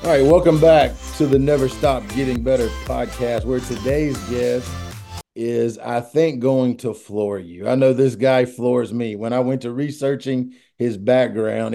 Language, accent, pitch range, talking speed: English, American, 120-140 Hz, 175 wpm